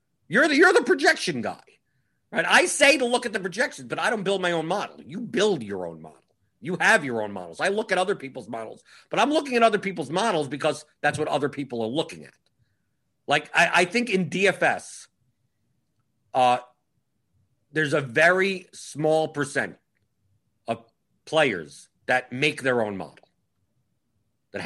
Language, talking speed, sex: English, 175 wpm, male